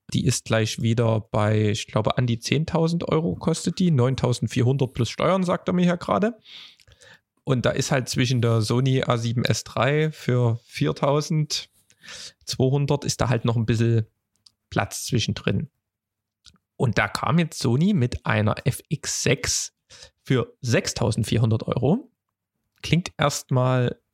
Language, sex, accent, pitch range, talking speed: German, male, German, 110-150 Hz, 130 wpm